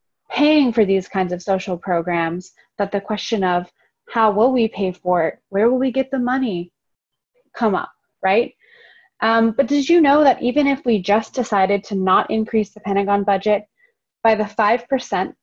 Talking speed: 180 wpm